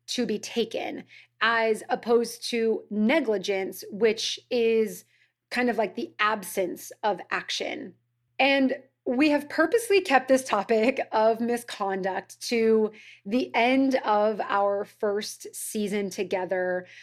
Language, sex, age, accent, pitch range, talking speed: English, female, 30-49, American, 195-250 Hz, 115 wpm